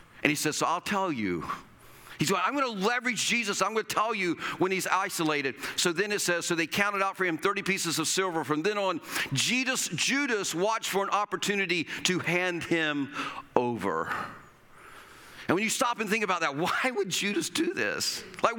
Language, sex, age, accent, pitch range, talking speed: English, male, 40-59, American, 180-245 Hz, 200 wpm